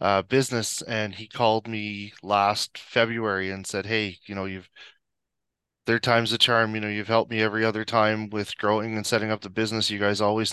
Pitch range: 100-115 Hz